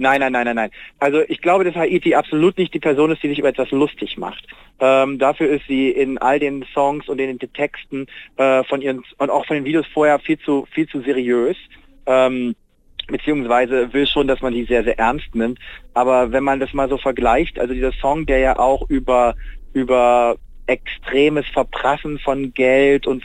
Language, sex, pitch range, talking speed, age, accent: German, male, 120-140 Hz, 200 wpm, 40-59, German